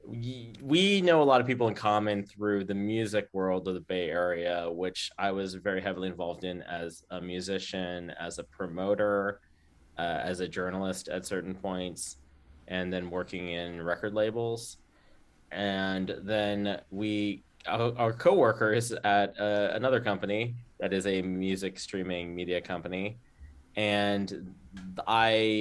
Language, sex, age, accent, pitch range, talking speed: English, male, 20-39, American, 90-115 Hz, 140 wpm